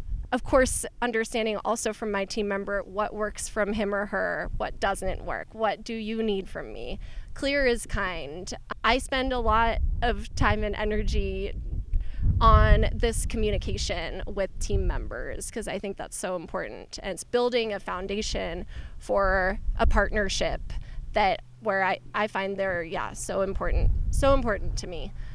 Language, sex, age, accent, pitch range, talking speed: English, female, 20-39, American, 200-265 Hz, 160 wpm